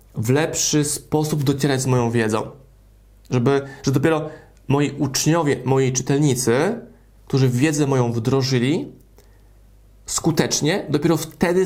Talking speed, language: 110 wpm, Polish